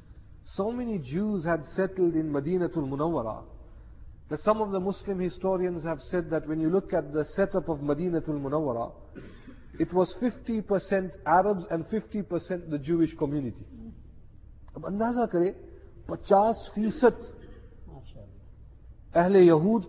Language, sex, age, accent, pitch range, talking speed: English, male, 50-69, Indian, 140-180 Hz, 115 wpm